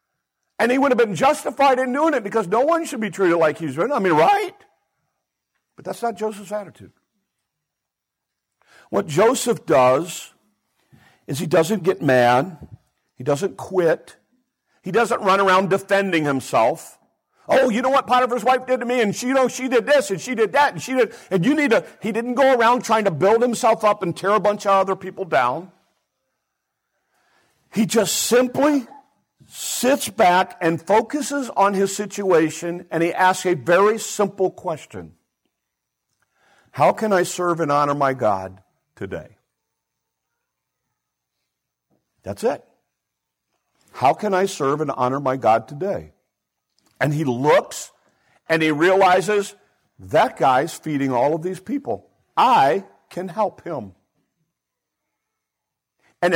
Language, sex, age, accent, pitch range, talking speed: English, male, 50-69, American, 160-235 Hz, 150 wpm